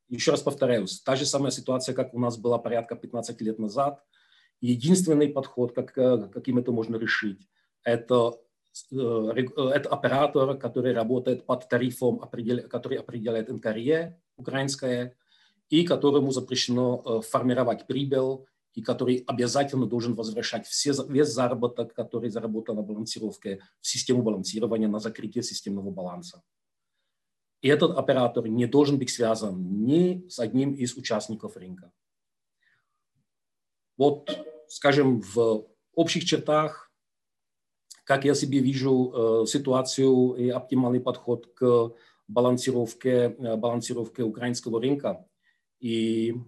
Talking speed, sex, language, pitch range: 115 wpm, male, Ukrainian, 115-135 Hz